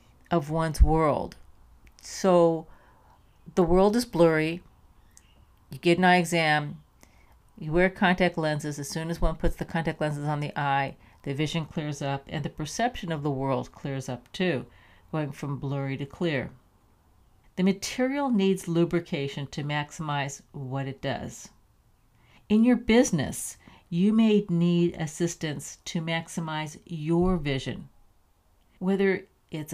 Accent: American